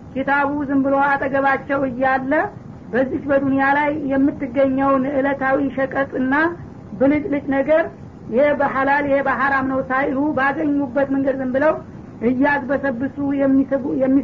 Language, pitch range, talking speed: Amharic, 260-280 Hz, 120 wpm